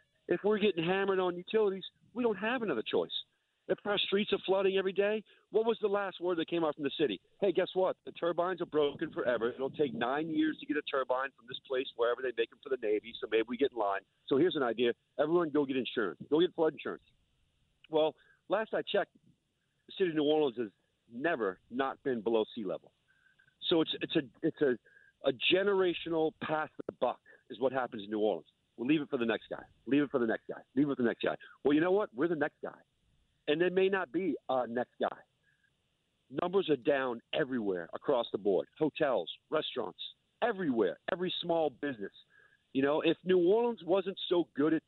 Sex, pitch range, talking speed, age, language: male, 150-200 Hz, 220 wpm, 50-69, English